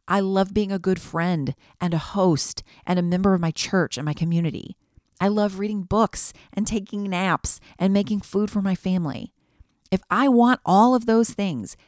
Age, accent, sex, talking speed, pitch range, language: 40-59, American, female, 190 wpm, 150-200 Hz, English